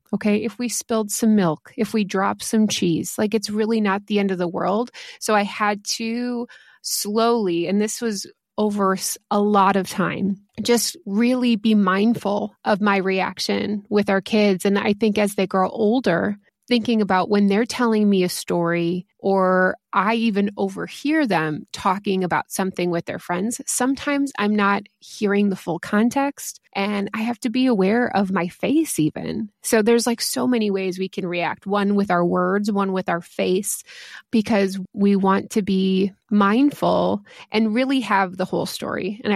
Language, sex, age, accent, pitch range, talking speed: English, female, 20-39, American, 190-225 Hz, 175 wpm